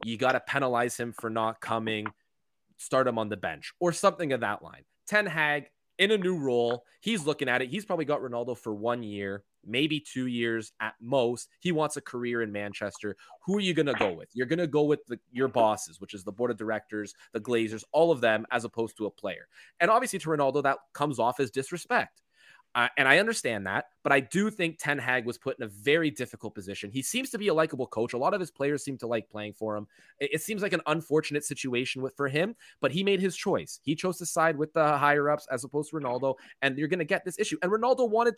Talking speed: 245 wpm